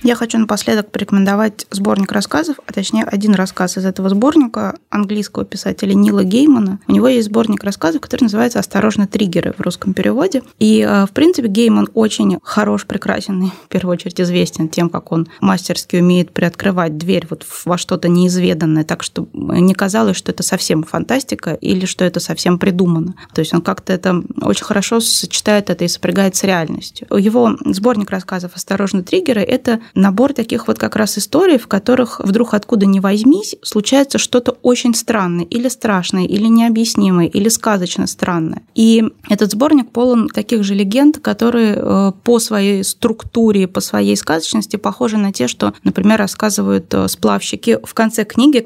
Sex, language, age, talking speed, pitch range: female, Russian, 20-39, 165 wpm, 185-230 Hz